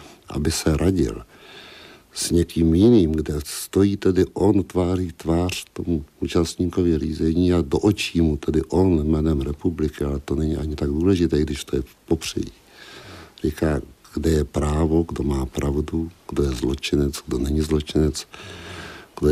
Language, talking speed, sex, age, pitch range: Czech, 150 wpm, male, 60-79, 75-90 Hz